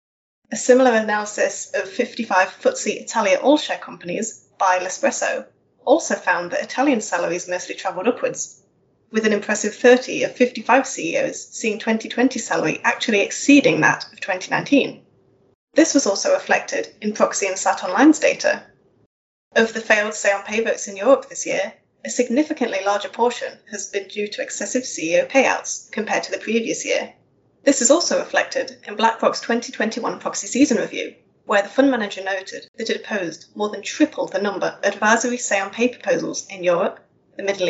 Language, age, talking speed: English, 10-29, 165 wpm